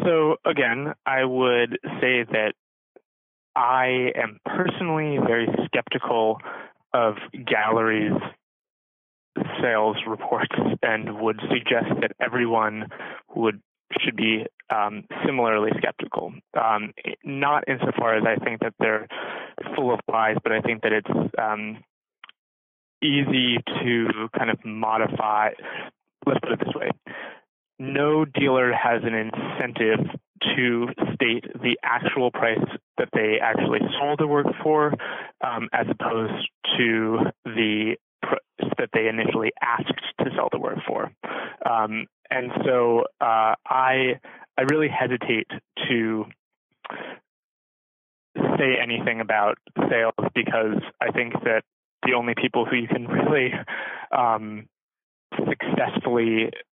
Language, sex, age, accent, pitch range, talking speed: English, male, 20-39, American, 110-130 Hz, 115 wpm